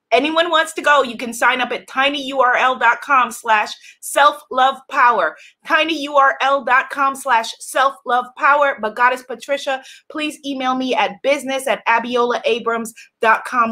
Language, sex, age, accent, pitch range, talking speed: English, female, 30-49, American, 240-365 Hz, 110 wpm